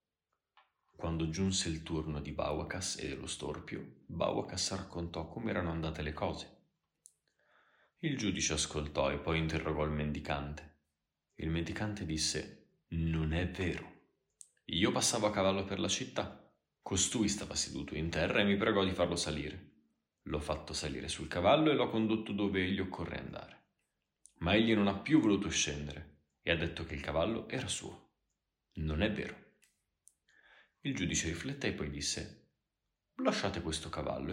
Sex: male